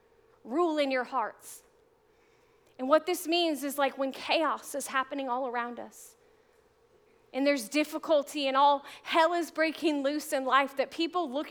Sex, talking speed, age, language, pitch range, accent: female, 160 wpm, 40-59, English, 315-440 Hz, American